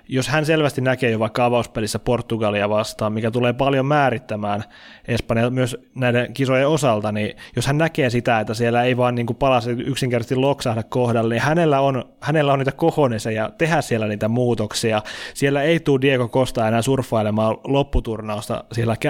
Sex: male